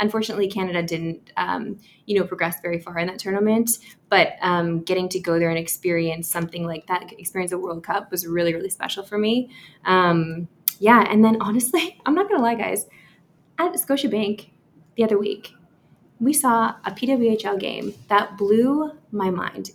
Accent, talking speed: American, 175 wpm